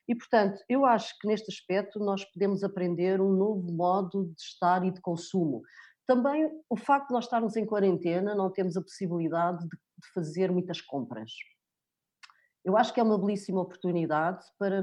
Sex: female